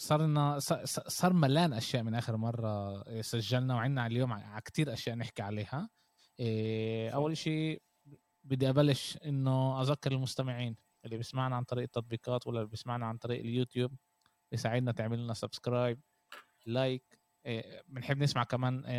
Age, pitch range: 20-39, 115-140 Hz